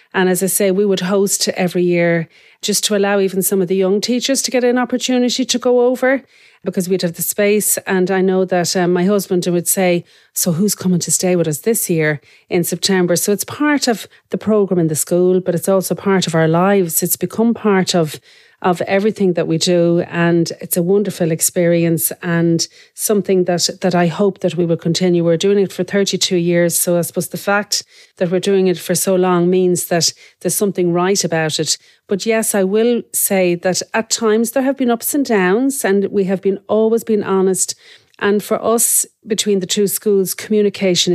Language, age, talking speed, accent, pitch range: English, 40-59, 210 wpm, Irish, 170-200 Hz